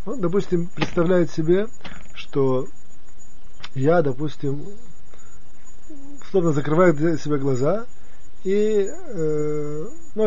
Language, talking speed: Russian, 90 wpm